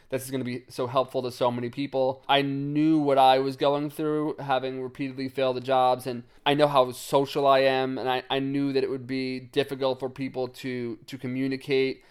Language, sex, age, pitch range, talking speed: English, male, 20-39, 120-135 Hz, 215 wpm